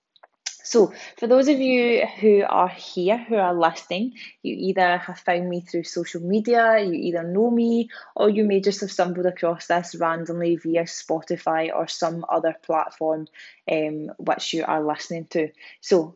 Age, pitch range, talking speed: 20-39, 175-215 Hz, 165 wpm